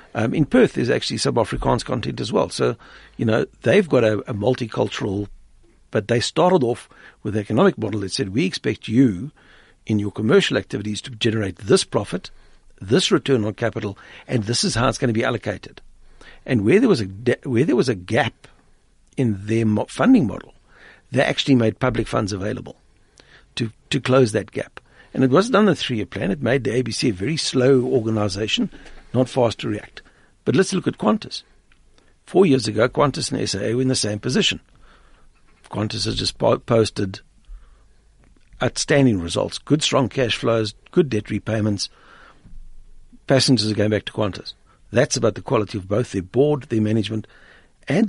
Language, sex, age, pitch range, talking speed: English, male, 60-79, 105-135 Hz, 175 wpm